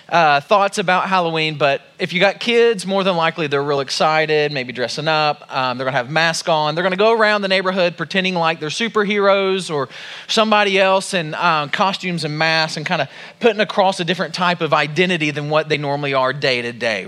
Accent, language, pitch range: American, English, 145-190 Hz